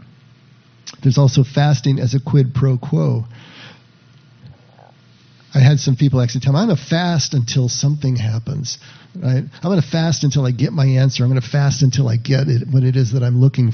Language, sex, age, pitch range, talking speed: English, male, 50-69, 125-140 Hz, 190 wpm